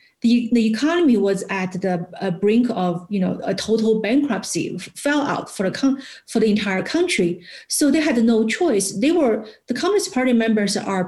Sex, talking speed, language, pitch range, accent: female, 195 wpm, English, 190-240 Hz, Chinese